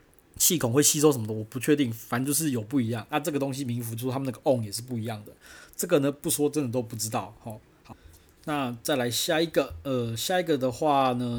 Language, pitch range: Chinese, 120-150 Hz